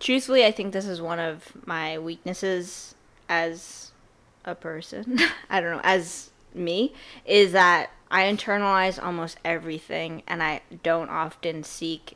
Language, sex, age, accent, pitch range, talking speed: English, female, 10-29, American, 165-200 Hz, 140 wpm